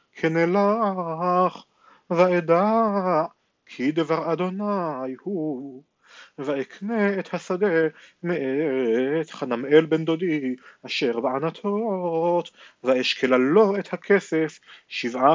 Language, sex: Hebrew, male